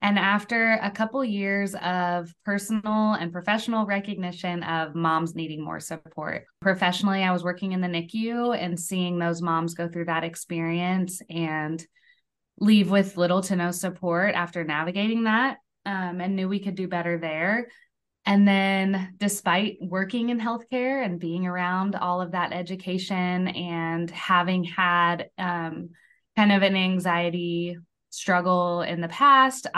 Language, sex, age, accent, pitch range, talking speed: English, female, 20-39, American, 165-200 Hz, 145 wpm